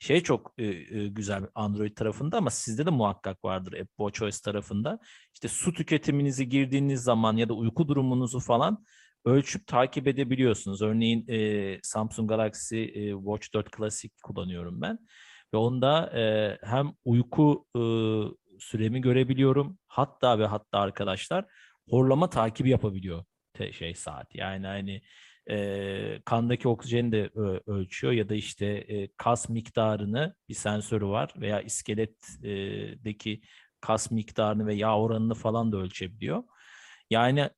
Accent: native